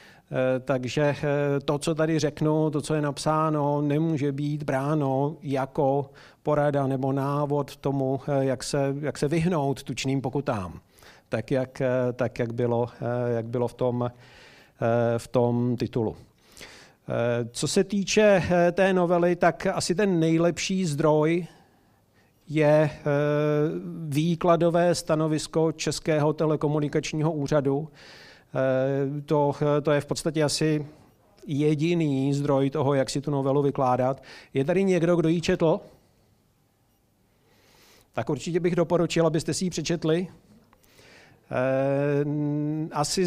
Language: Czech